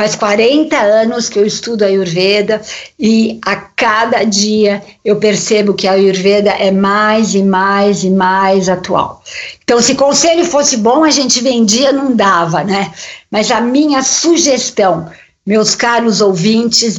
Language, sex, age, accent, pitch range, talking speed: Portuguese, female, 50-69, Brazilian, 200-235 Hz, 145 wpm